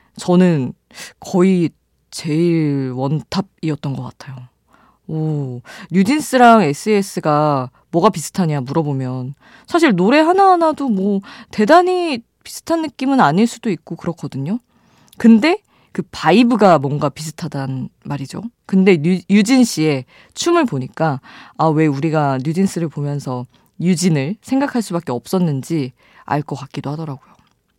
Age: 20-39